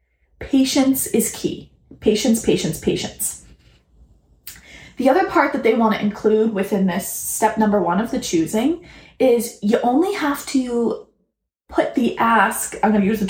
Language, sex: English, female